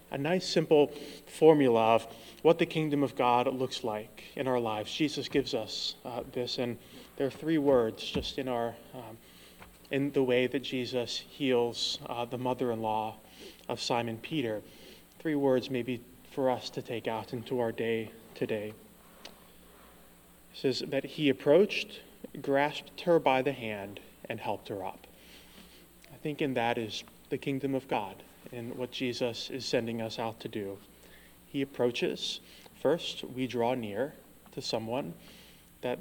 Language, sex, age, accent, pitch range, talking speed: English, male, 20-39, American, 115-145 Hz, 155 wpm